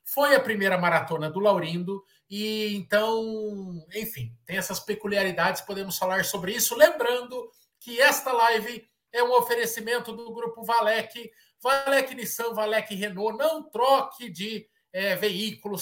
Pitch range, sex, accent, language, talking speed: 170-230 Hz, male, Brazilian, Portuguese, 135 wpm